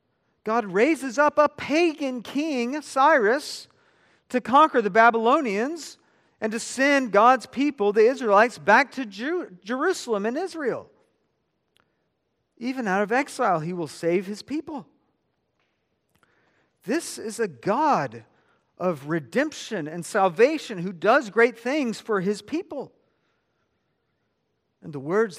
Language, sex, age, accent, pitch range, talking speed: English, male, 40-59, American, 155-255 Hz, 120 wpm